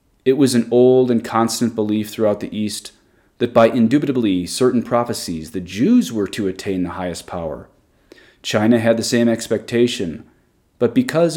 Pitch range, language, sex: 110-130 Hz, English, male